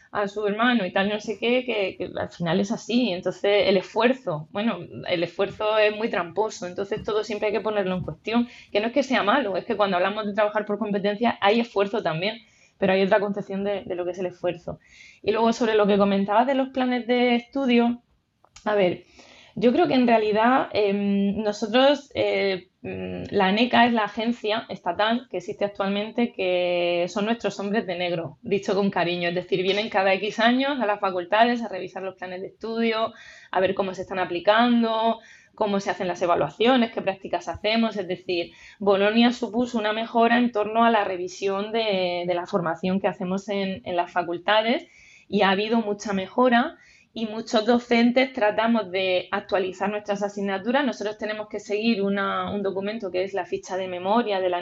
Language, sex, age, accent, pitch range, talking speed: Spanish, female, 20-39, Spanish, 190-225 Hz, 195 wpm